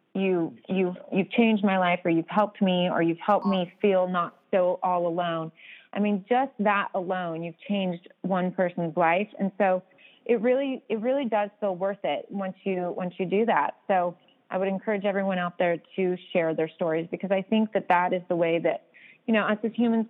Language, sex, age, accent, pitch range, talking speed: English, female, 30-49, American, 180-220 Hz, 210 wpm